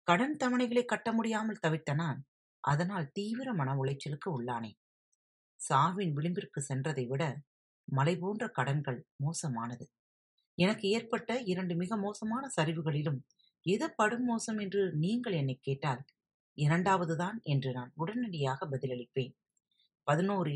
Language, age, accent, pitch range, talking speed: Tamil, 30-49, native, 140-205 Hz, 95 wpm